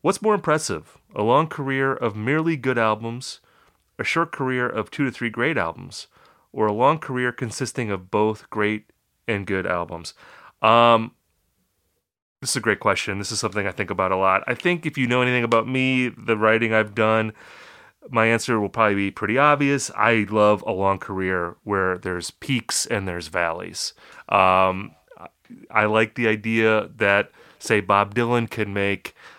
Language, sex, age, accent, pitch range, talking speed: English, male, 30-49, American, 100-125 Hz, 175 wpm